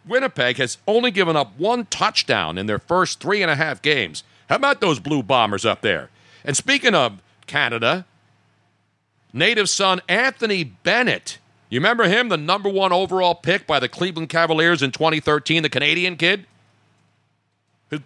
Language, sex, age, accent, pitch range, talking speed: English, male, 50-69, American, 115-170 Hz, 150 wpm